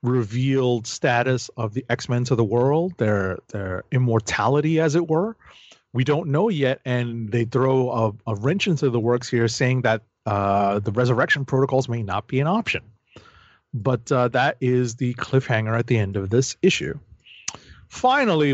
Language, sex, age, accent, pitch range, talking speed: English, male, 30-49, American, 115-140 Hz, 170 wpm